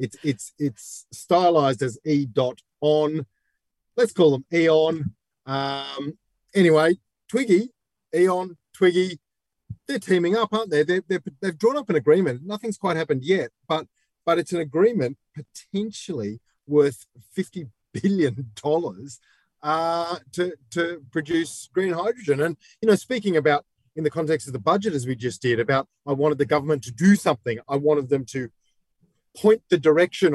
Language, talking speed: English, 150 wpm